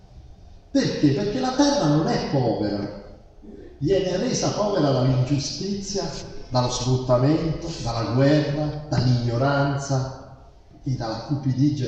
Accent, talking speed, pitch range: native, 95 wpm, 105-145 Hz